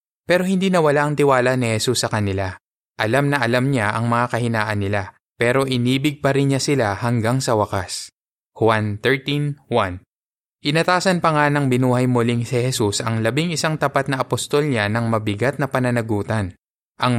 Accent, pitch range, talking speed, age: native, 110-135 Hz, 170 wpm, 20-39